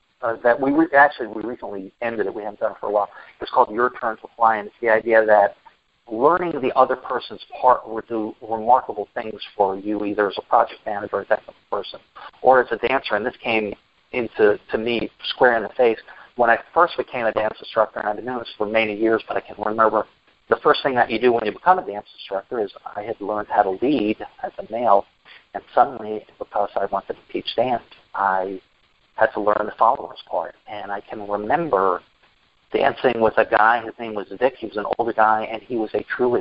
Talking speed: 225 wpm